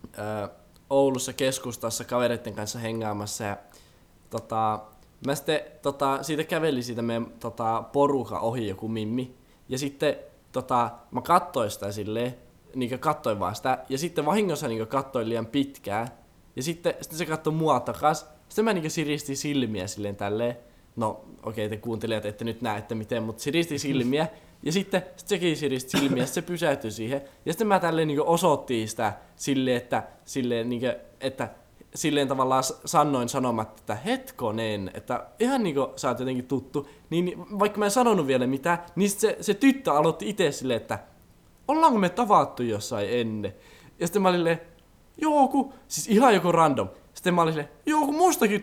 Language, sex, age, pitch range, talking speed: Finnish, male, 20-39, 115-170 Hz, 160 wpm